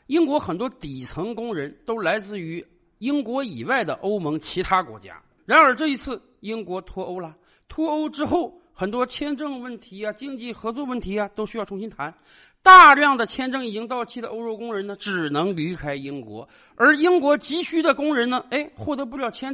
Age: 50-69